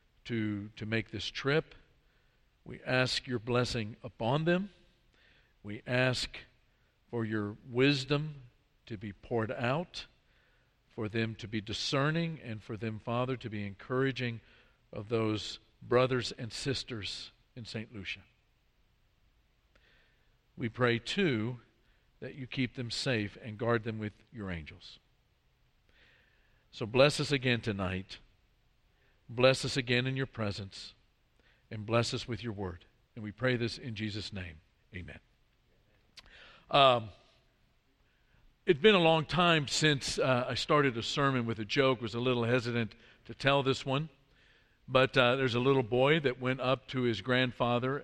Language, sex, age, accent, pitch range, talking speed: English, male, 50-69, American, 115-135 Hz, 140 wpm